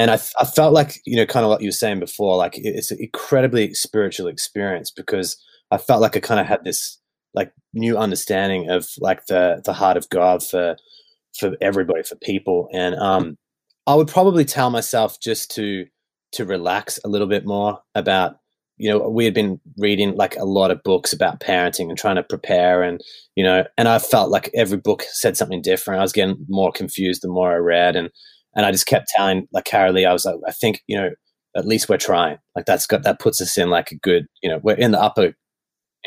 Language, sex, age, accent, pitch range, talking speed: English, male, 20-39, Australian, 90-125 Hz, 225 wpm